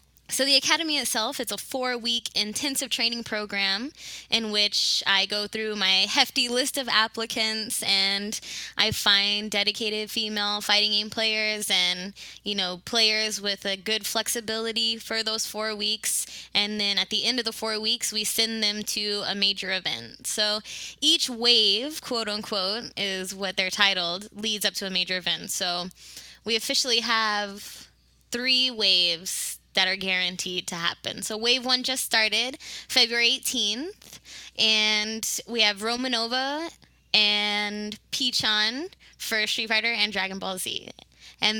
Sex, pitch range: female, 200-235 Hz